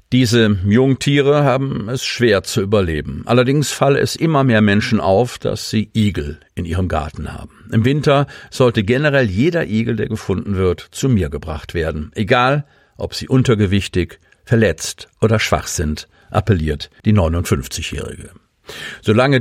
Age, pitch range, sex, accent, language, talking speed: 50-69, 95-130 Hz, male, German, German, 140 wpm